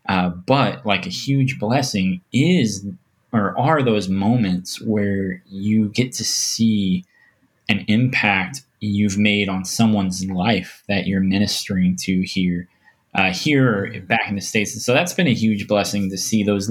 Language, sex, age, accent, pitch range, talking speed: English, male, 20-39, American, 95-115 Hz, 160 wpm